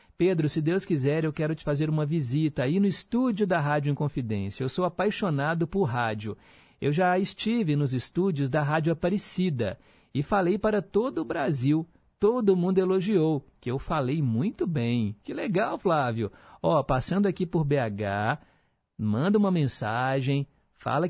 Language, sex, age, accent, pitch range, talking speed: Portuguese, male, 50-69, Brazilian, 130-180 Hz, 155 wpm